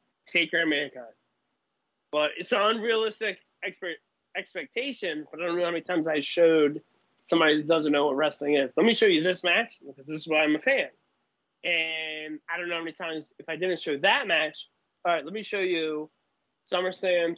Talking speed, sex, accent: 205 wpm, male, American